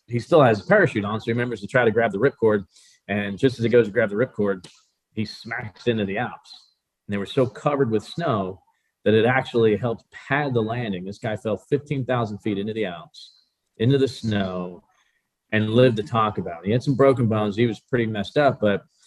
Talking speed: 220 wpm